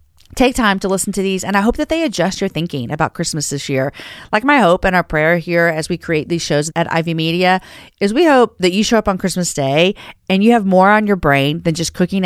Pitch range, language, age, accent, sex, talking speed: 150-200 Hz, English, 40-59, American, female, 260 wpm